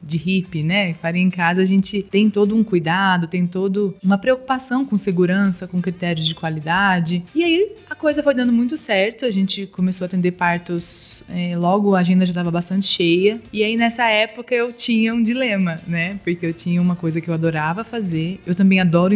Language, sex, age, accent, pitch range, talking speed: Portuguese, female, 20-39, Brazilian, 170-205 Hz, 205 wpm